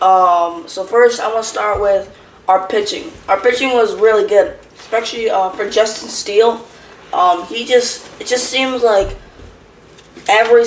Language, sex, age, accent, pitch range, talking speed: English, female, 20-39, American, 190-230 Hz, 150 wpm